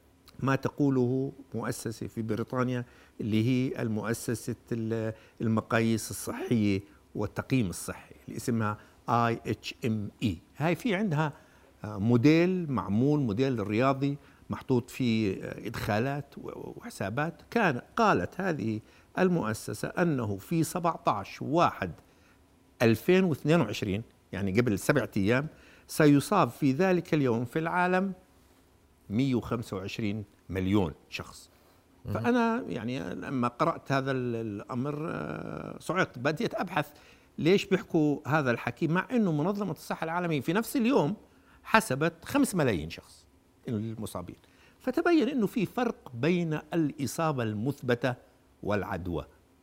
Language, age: Arabic, 60-79